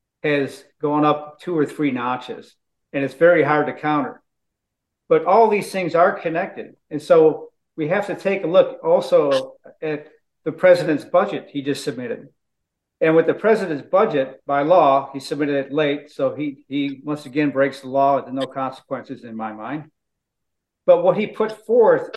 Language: English